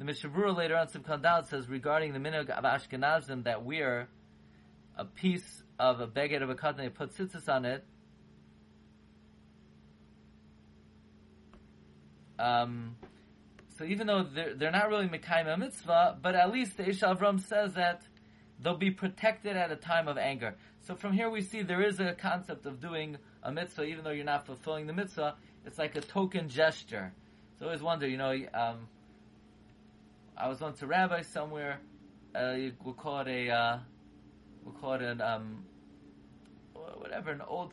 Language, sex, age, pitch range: English, male, 30-49, 110-170 Hz